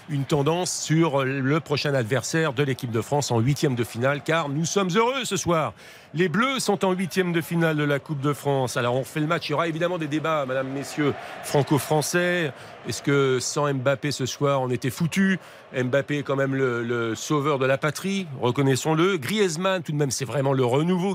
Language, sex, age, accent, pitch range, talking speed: French, male, 40-59, French, 140-185 Hz, 210 wpm